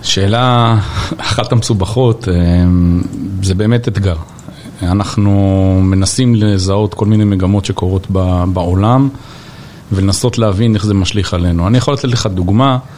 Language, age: Hebrew, 40-59